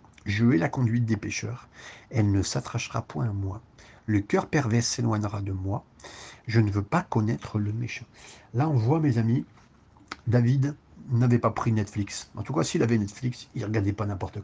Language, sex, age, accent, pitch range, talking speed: French, male, 50-69, French, 105-125 Hz, 200 wpm